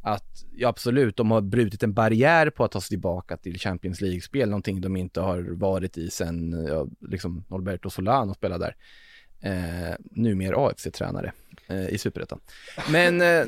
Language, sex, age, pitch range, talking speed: Swedish, male, 20-39, 95-115 Hz, 170 wpm